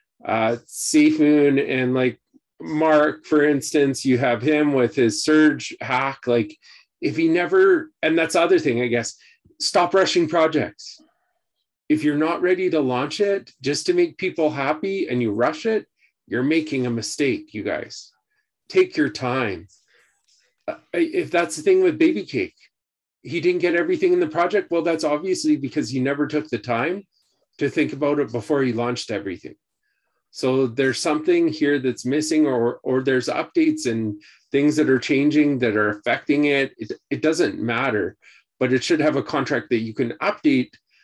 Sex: male